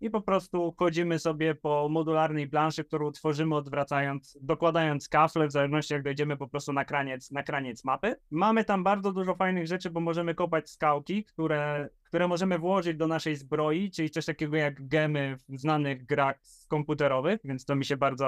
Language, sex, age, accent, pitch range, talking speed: Polish, male, 20-39, native, 145-165 Hz, 175 wpm